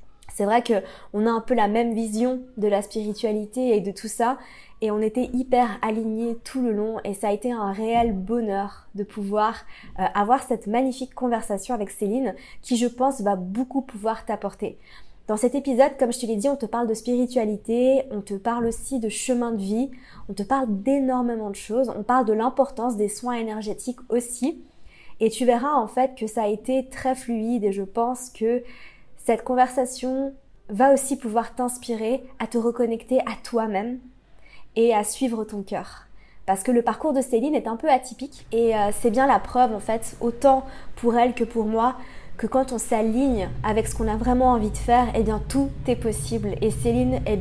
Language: French